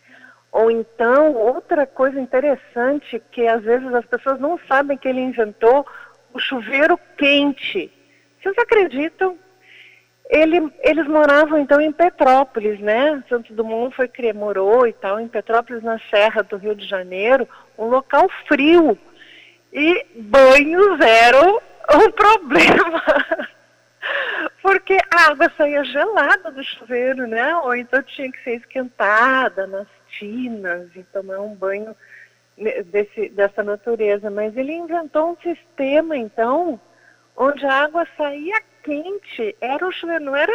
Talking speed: 130 wpm